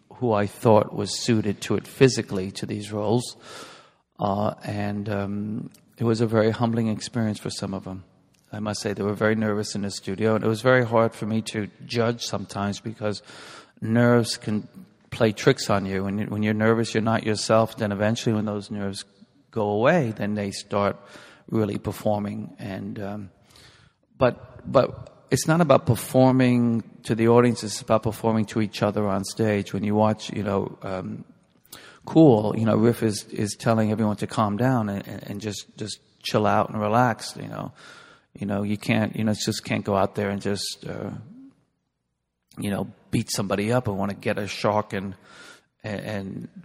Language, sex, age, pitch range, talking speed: English, male, 40-59, 100-115 Hz, 190 wpm